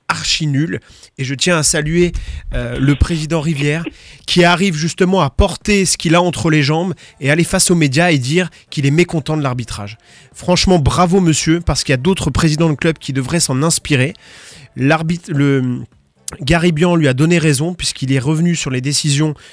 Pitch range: 140-175 Hz